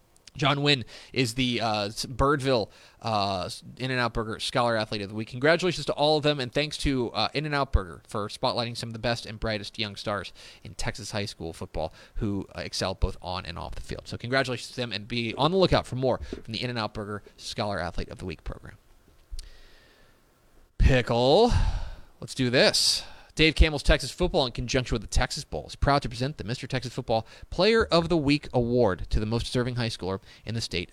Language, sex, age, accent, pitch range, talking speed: English, male, 30-49, American, 105-135 Hz, 205 wpm